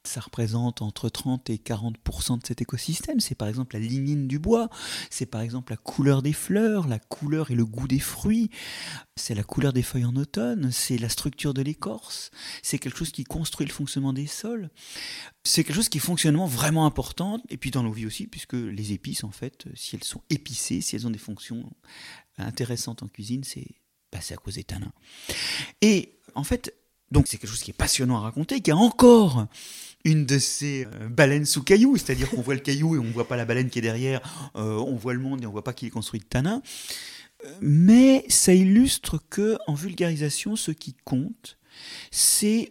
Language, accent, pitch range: French, French, 120-170 Hz